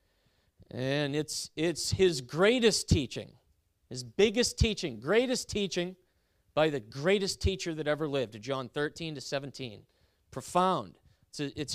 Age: 40-59